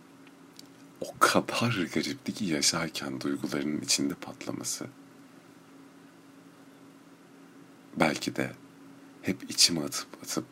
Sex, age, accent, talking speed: male, 50-69, native, 75 wpm